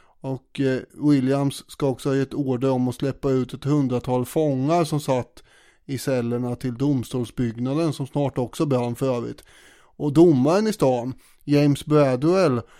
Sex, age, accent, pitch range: male, 30-49, Swedish, 130-155 Hz